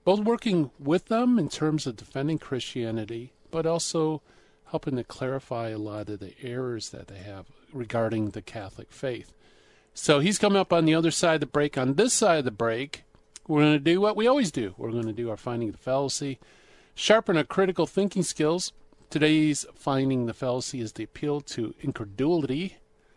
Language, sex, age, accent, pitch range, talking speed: English, male, 40-59, American, 125-190 Hz, 190 wpm